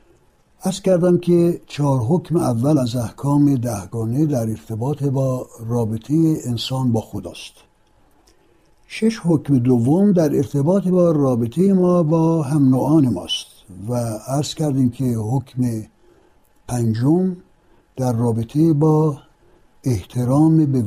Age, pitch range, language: 60-79, 115-155 Hz, Persian